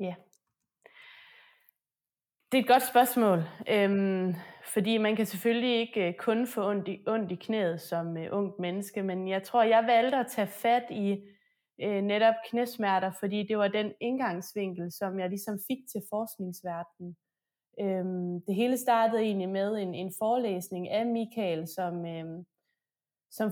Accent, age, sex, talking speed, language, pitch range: native, 20-39, female, 155 wpm, Danish, 180-225 Hz